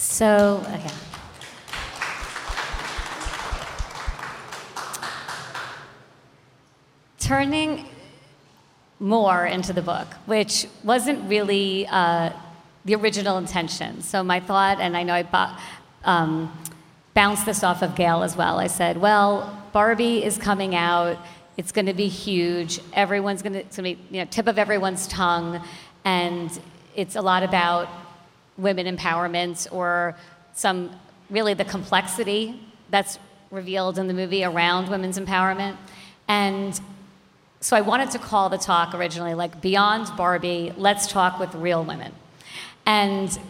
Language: English